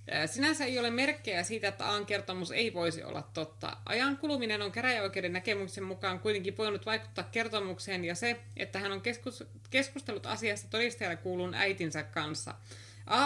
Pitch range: 170-230 Hz